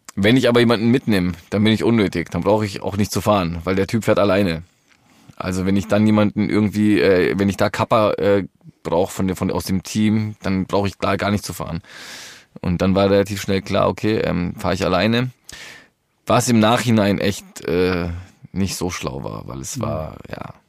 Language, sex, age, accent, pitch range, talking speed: German, male, 20-39, German, 90-105 Hz, 205 wpm